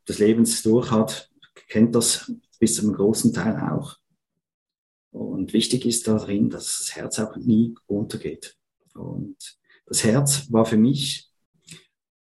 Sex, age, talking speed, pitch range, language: male, 50-69, 130 wpm, 105-125 Hz, German